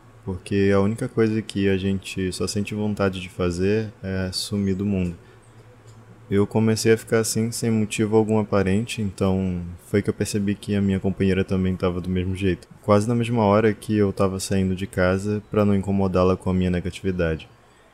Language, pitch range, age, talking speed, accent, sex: Portuguese, 95-110 Hz, 20-39, 185 wpm, Brazilian, male